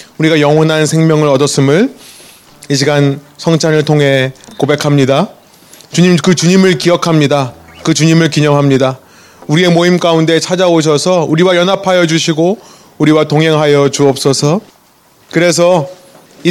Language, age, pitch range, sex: Korean, 30-49, 140-175 Hz, male